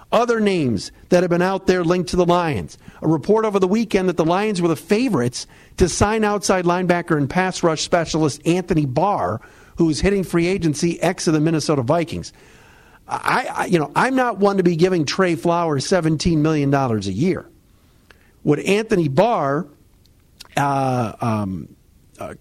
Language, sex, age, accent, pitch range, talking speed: English, male, 50-69, American, 145-185 Hz, 170 wpm